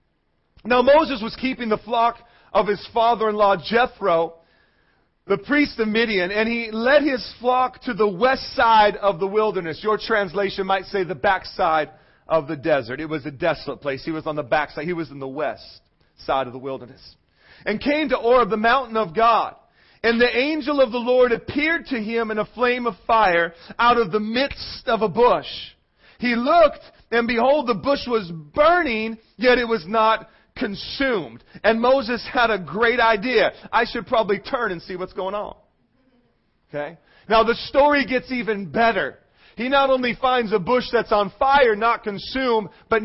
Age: 40-59